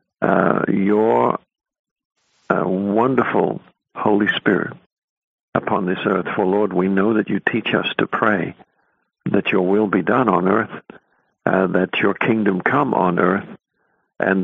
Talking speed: 140 wpm